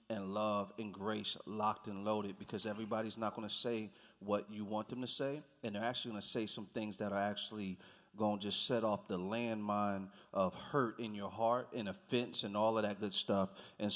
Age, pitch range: 40-59, 100-115 Hz